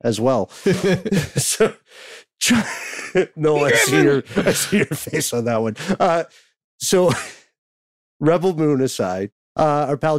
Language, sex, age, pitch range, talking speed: English, male, 50-69, 100-135 Hz, 135 wpm